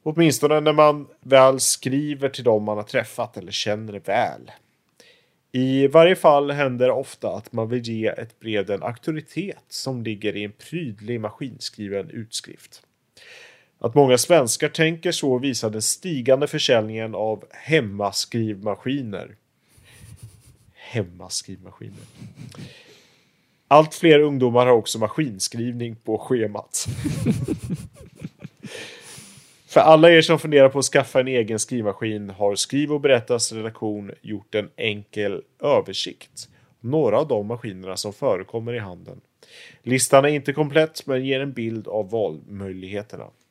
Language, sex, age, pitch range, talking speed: English, male, 30-49, 110-145 Hz, 125 wpm